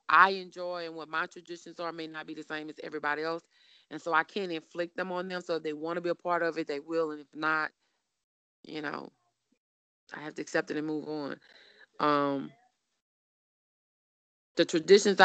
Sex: female